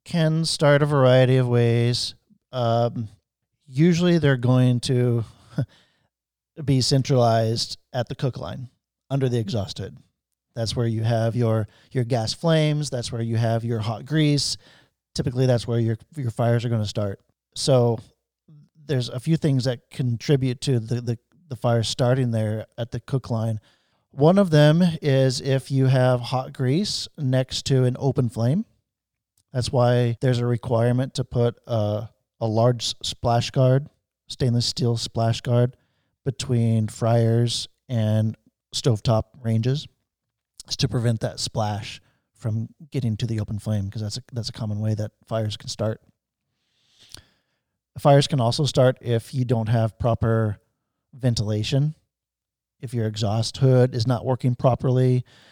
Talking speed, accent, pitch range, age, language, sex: 150 wpm, American, 115-130 Hz, 40-59, English, male